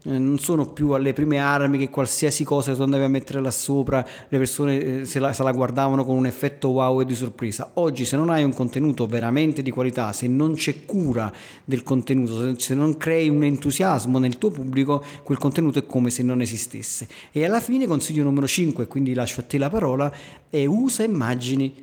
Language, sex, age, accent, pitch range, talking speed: Italian, male, 40-59, native, 120-145 Hz, 205 wpm